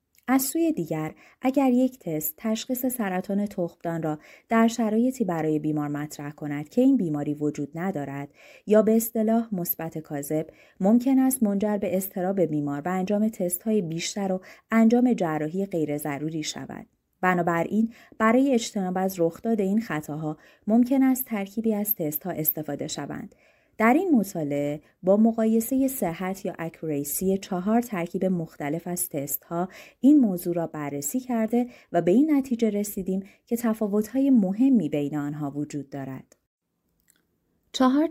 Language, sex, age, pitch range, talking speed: Persian, female, 30-49, 155-225 Hz, 145 wpm